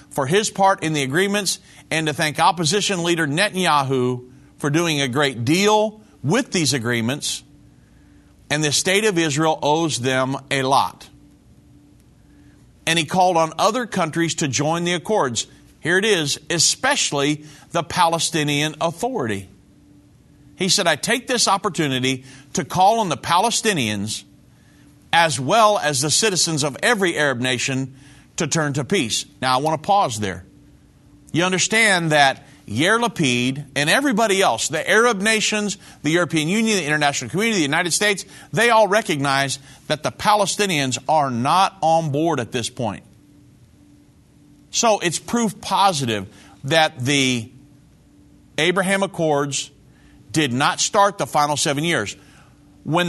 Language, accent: English, American